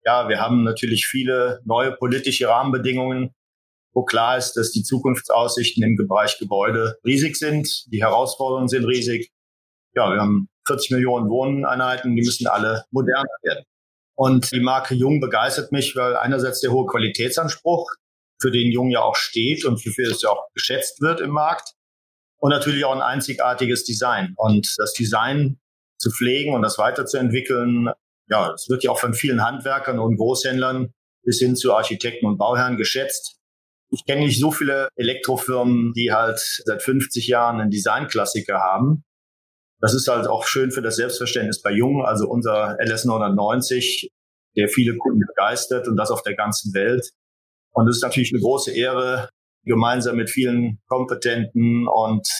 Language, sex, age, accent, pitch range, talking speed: German, male, 40-59, German, 115-130 Hz, 160 wpm